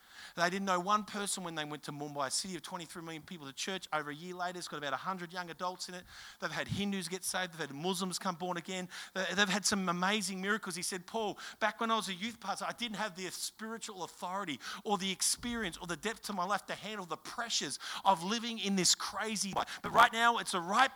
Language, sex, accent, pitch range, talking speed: English, male, Australian, 190-255 Hz, 245 wpm